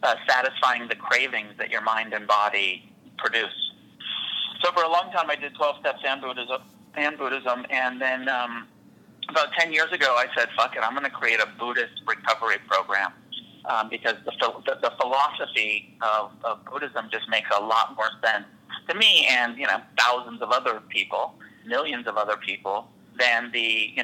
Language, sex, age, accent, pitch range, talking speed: English, male, 40-59, American, 115-130 Hz, 175 wpm